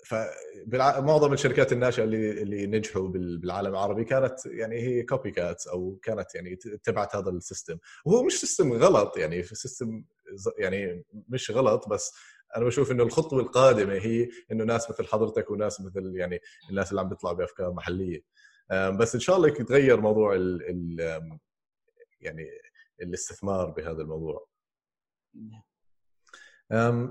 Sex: male